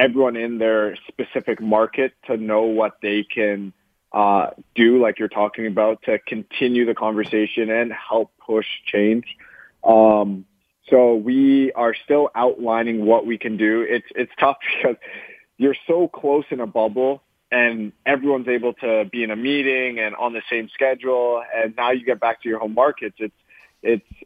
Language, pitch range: English, 110-125 Hz